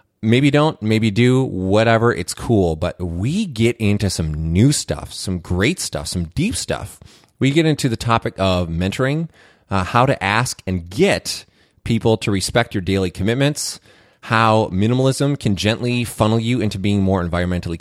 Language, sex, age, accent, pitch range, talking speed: English, male, 30-49, American, 95-125 Hz, 165 wpm